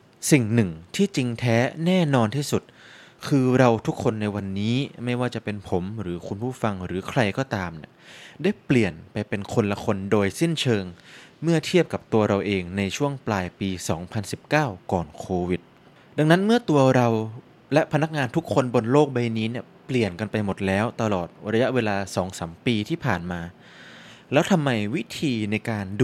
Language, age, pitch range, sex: Thai, 20-39, 100-130 Hz, male